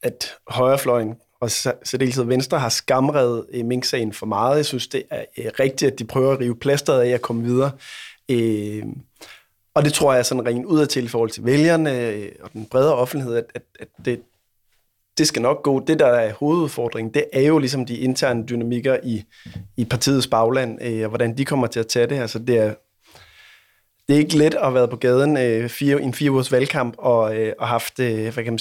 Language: Danish